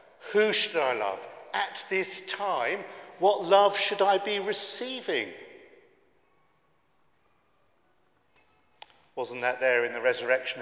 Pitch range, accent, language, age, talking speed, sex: 135-190 Hz, British, English, 50-69, 105 wpm, male